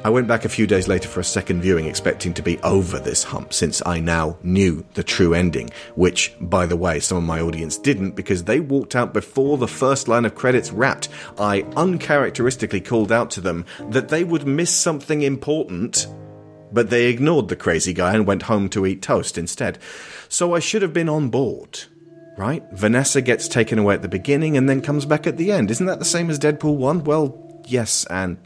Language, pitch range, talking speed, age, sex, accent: English, 90-125 Hz, 215 wpm, 40-59, male, British